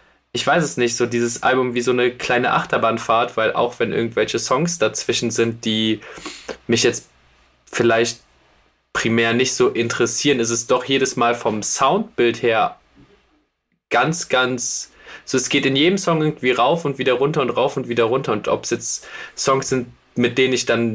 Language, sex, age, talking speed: German, male, 20-39, 180 wpm